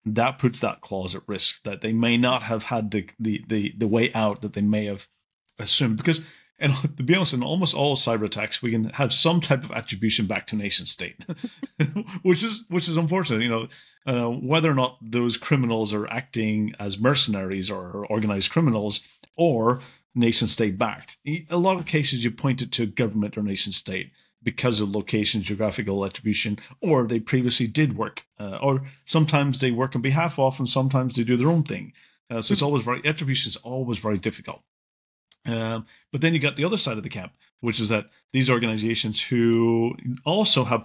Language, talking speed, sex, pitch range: English, 200 wpm, male, 110-135 Hz